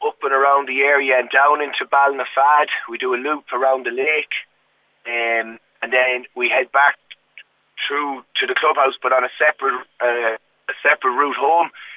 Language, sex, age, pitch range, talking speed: English, male, 30-49, 125-165 Hz, 175 wpm